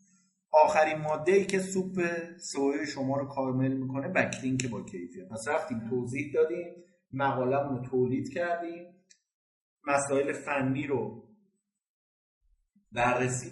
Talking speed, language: 110 wpm, Persian